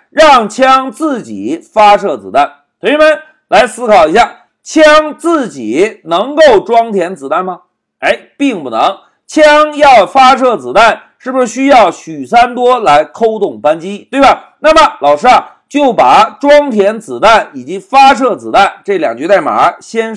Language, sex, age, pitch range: Chinese, male, 50-69, 220-295 Hz